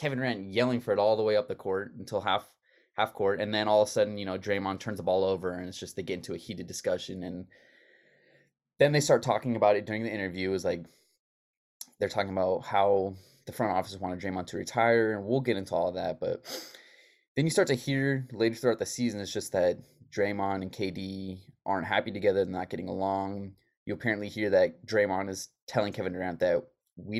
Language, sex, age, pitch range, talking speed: English, male, 20-39, 95-115 Hz, 225 wpm